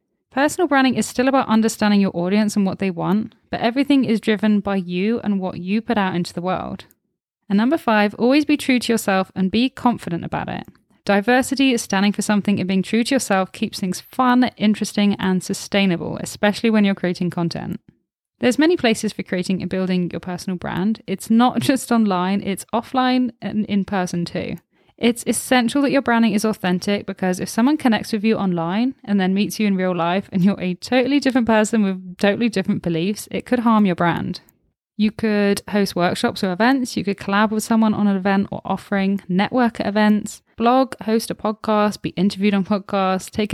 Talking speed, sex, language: 200 wpm, female, English